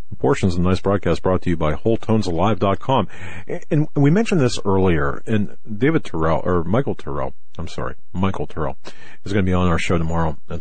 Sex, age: male, 50-69